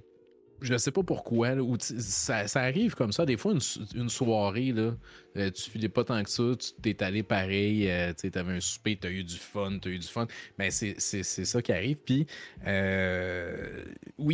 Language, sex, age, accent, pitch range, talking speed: French, male, 30-49, Canadian, 90-115 Hz, 205 wpm